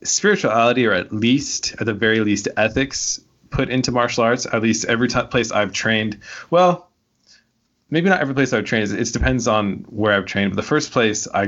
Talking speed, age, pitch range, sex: 195 wpm, 20-39, 105-125 Hz, male